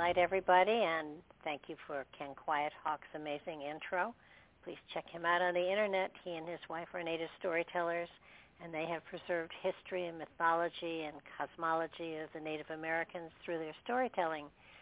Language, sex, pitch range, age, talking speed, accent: English, female, 165-185 Hz, 60-79, 165 wpm, American